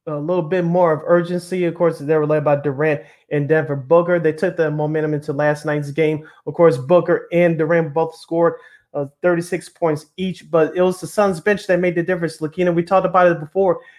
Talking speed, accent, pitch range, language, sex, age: 220 wpm, American, 150-175 Hz, English, male, 30-49